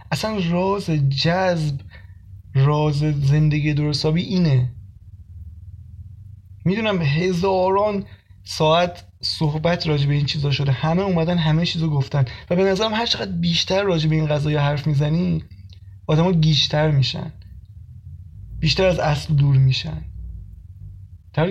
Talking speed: 110 wpm